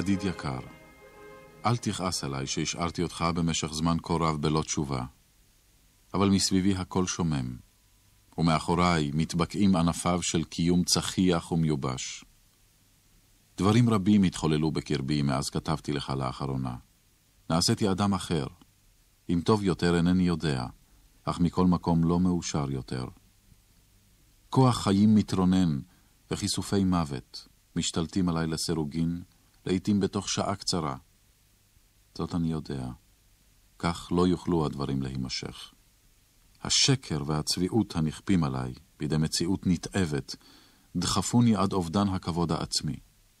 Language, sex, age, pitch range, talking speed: Hebrew, male, 40-59, 80-100 Hz, 110 wpm